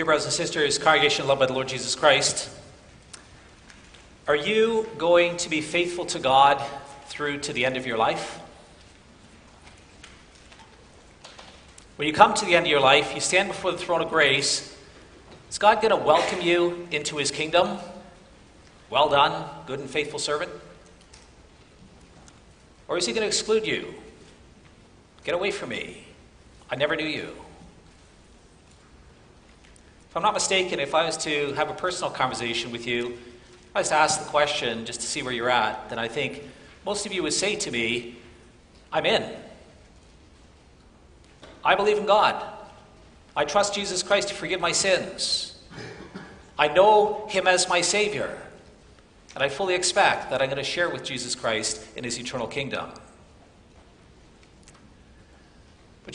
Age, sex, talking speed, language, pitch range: 40-59, male, 155 wpm, English, 120-180 Hz